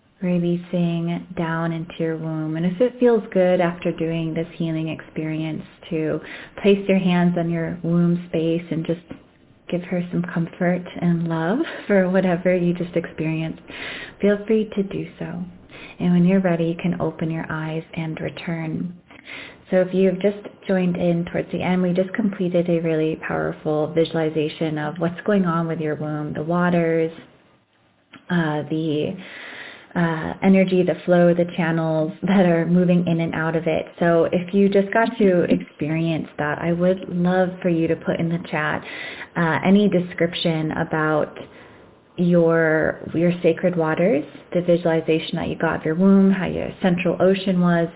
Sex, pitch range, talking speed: female, 160-180 Hz, 165 wpm